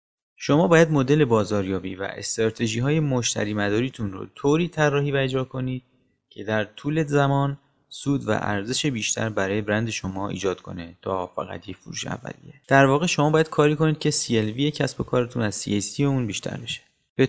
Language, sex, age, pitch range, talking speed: Persian, male, 30-49, 105-140 Hz, 170 wpm